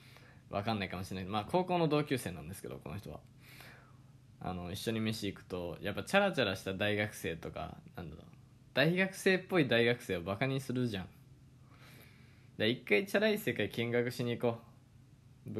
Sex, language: male, Japanese